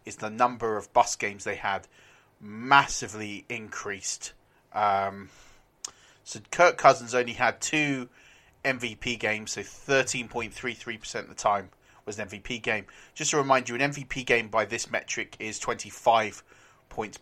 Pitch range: 110-130 Hz